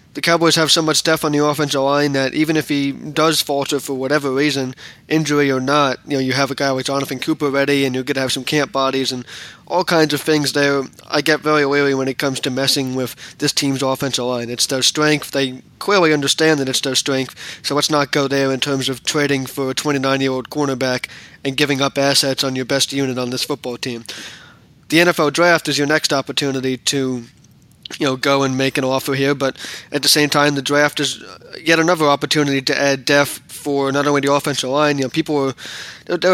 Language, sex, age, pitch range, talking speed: English, male, 20-39, 135-150 Hz, 230 wpm